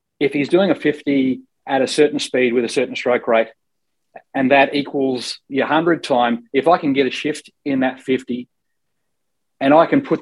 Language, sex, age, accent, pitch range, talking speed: English, male, 30-49, Australian, 130-155 Hz, 195 wpm